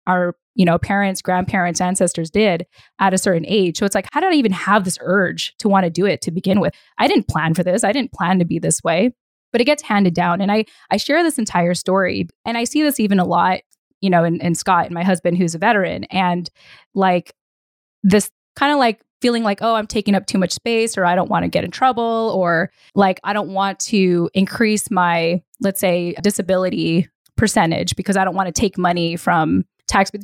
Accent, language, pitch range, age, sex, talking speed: American, English, 175-215 Hz, 10-29, female, 230 wpm